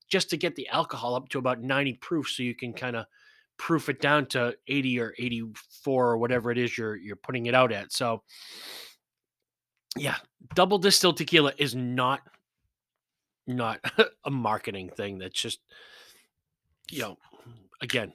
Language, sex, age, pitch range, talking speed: English, male, 30-49, 120-175 Hz, 160 wpm